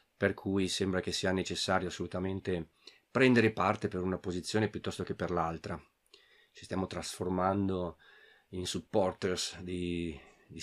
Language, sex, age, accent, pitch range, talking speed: Italian, male, 40-59, native, 90-115 Hz, 130 wpm